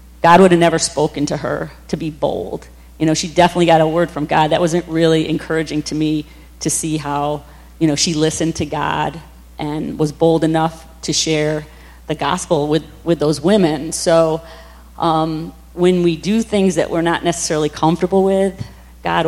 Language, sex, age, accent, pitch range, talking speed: English, female, 40-59, American, 150-170 Hz, 185 wpm